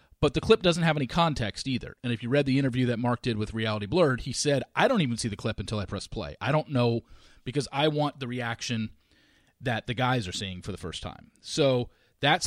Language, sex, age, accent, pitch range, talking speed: English, male, 40-59, American, 110-140 Hz, 245 wpm